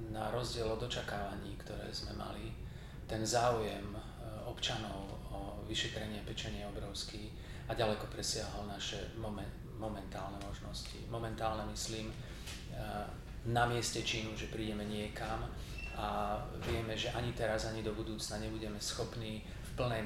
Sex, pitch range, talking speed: male, 105-115 Hz, 125 wpm